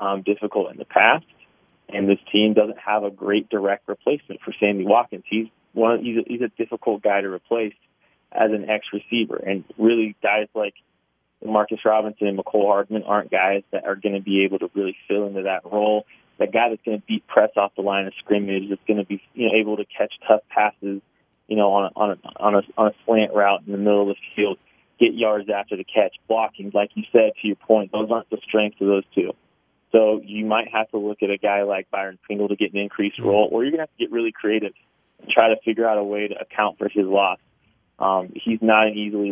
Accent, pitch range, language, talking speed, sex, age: American, 100-110 Hz, English, 240 wpm, male, 30-49